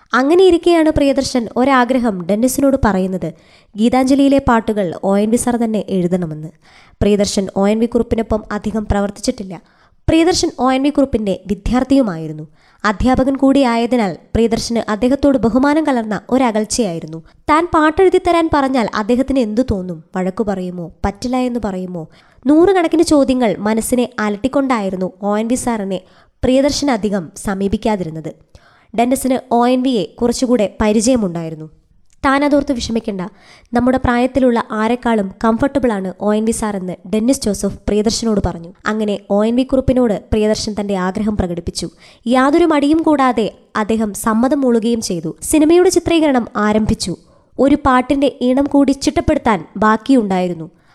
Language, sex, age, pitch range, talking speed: Malayalam, male, 20-39, 205-260 Hz, 110 wpm